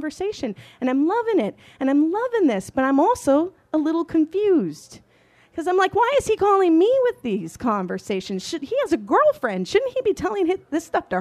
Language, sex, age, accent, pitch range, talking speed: English, female, 30-49, American, 235-360 Hz, 205 wpm